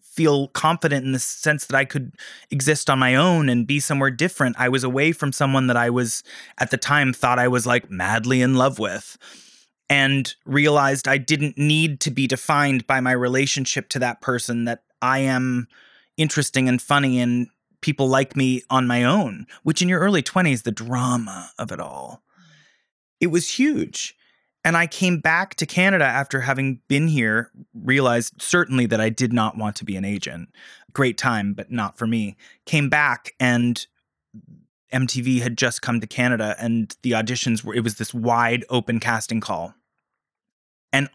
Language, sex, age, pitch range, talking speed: English, male, 20-39, 120-150 Hz, 180 wpm